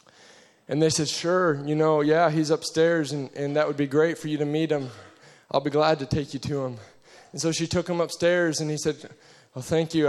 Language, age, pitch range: English, 20-39, 150-170 Hz